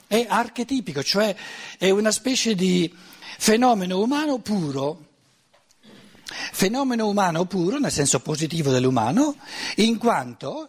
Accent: native